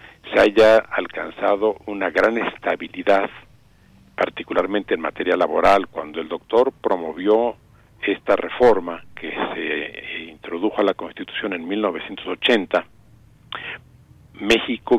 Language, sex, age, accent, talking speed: Spanish, male, 50-69, Mexican, 100 wpm